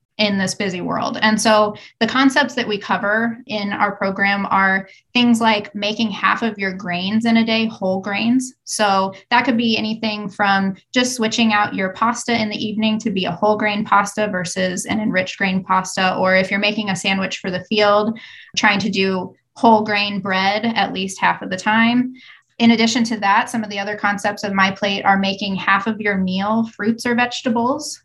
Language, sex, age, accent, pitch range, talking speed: English, female, 20-39, American, 195-225 Hz, 200 wpm